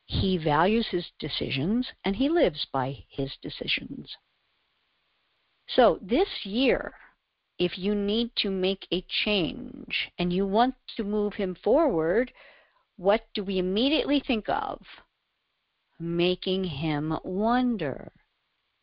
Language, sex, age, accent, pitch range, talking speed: English, female, 50-69, American, 165-235 Hz, 115 wpm